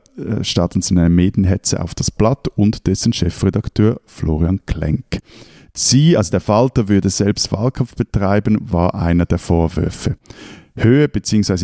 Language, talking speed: German, 135 wpm